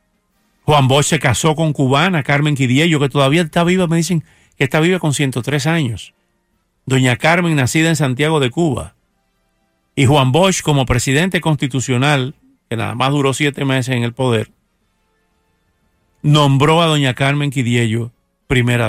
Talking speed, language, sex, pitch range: 155 wpm, English, male, 125-165 Hz